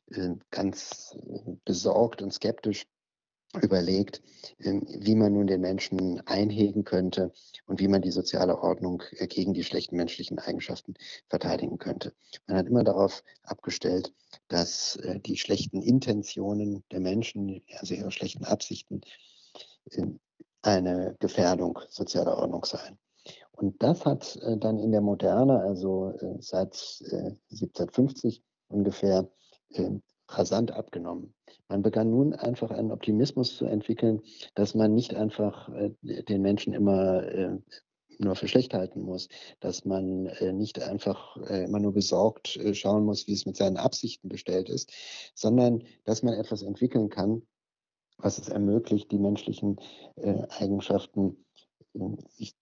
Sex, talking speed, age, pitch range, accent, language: male, 120 wpm, 50-69, 95-110 Hz, German, German